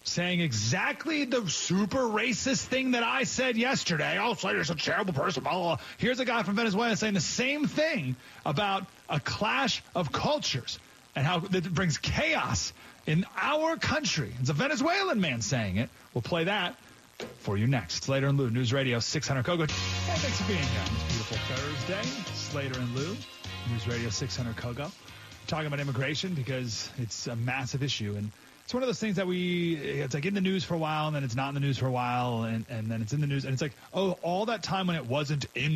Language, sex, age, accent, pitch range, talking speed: English, male, 30-49, American, 115-185 Hz, 210 wpm